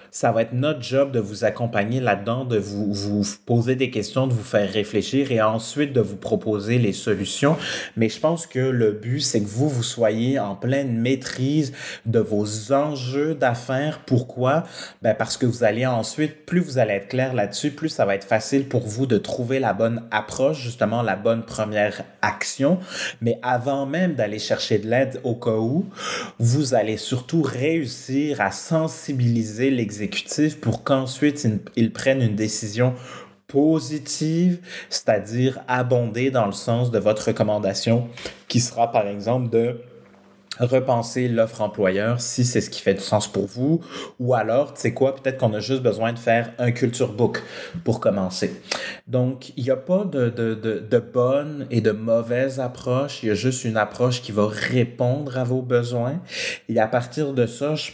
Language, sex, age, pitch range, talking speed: French, male, 30-49, 110-135 Hz, 175 wpm